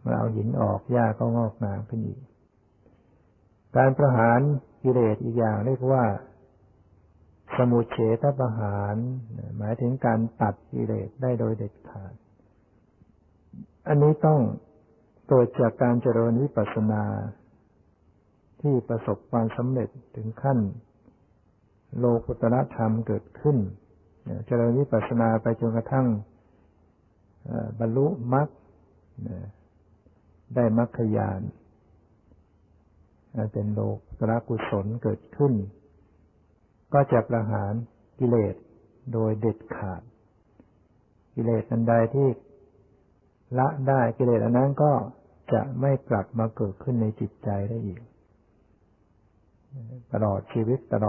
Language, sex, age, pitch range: Thai, male, 60-79, 100-120 Hz